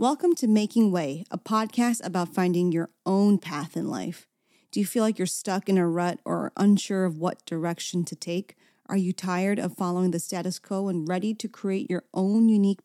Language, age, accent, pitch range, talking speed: English, 30-49, American, 180-235 Hz, 205 wpm